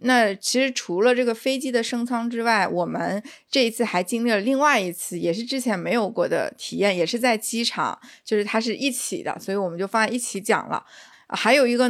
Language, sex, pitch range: Chinese, female, 195-255 Hz